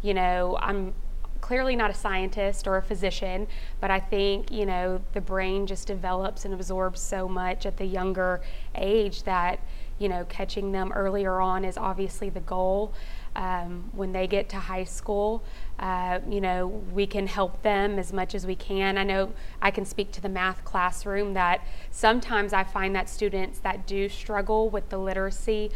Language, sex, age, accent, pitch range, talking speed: English, female, 20-39, American, 185-205 Hz, 180 wpm